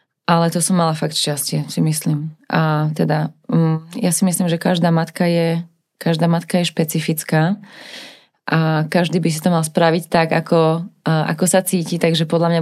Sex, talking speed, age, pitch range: female, 170 wpm, 20-39, 160-180 Hz